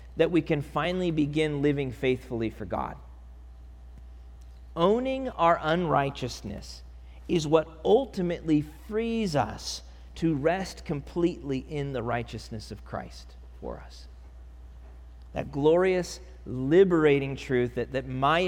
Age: 40-59